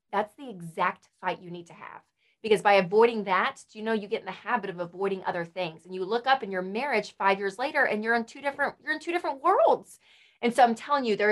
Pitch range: 190-255 Hz